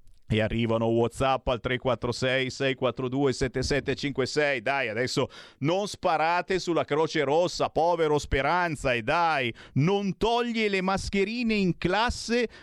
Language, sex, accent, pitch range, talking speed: Italian, male, native, 115-155 Hz, 105 wpm